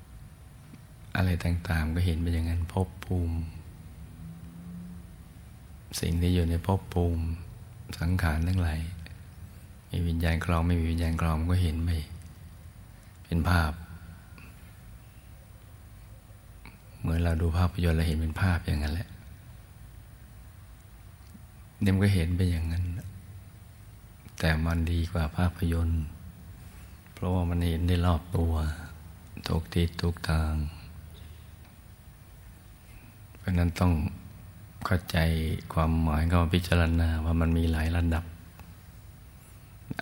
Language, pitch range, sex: Thai, 85-95 Hz, male